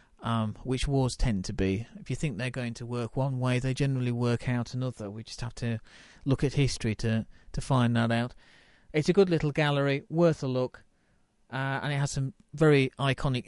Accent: British